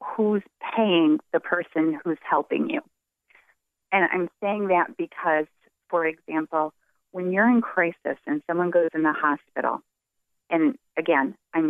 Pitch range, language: 155-205 Hz, English